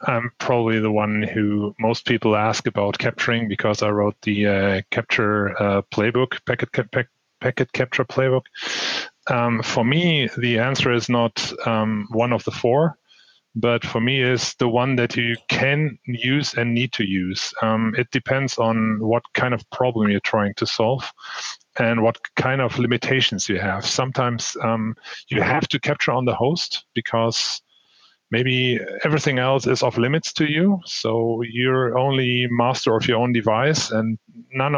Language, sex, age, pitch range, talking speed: English, male, 30-49, 110-130 Hz, 165 wpm